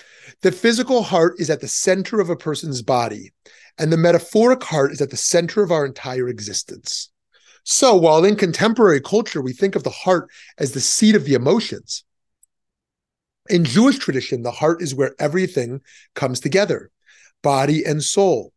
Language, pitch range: English, 130-185 Hz